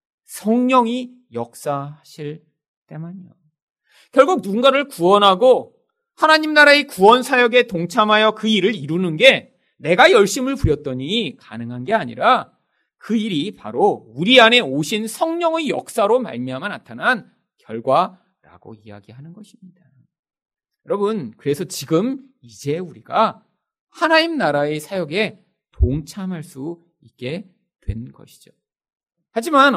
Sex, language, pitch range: male, Korean, 150-245 Hz